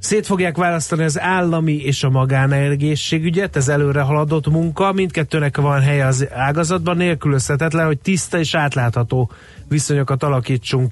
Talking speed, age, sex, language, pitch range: 130 wpm, 30-49, male, Hungarian, 130-165 Hz